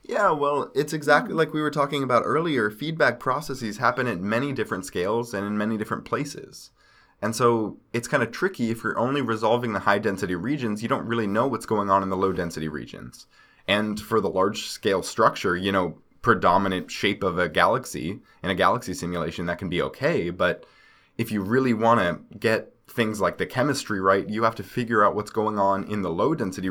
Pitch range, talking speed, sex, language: 95-120 Hz, 200 wpm, male, English